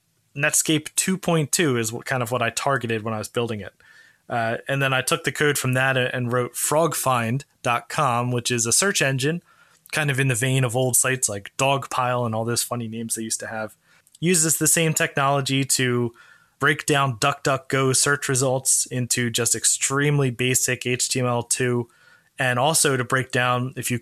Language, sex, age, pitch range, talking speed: English, male, 20-39, 125-150 Hz, 180 wpm